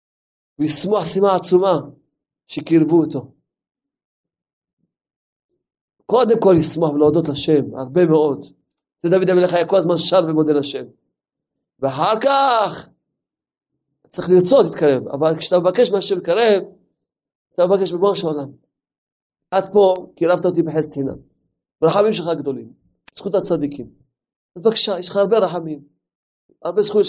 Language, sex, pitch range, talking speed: Hebrew, male, 170-260 Hz, 115 wpm